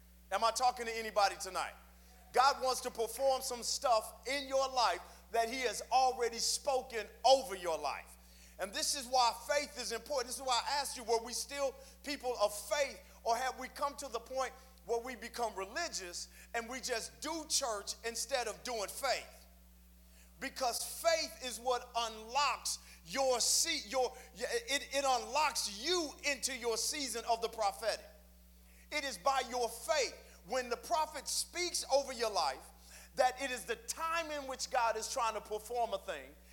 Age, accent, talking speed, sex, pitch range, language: 40-59, American, 175 wpm, male, 225-280 Hz, English